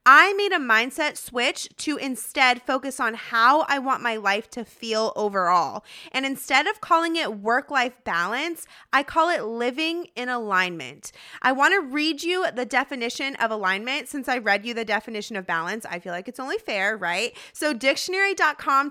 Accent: American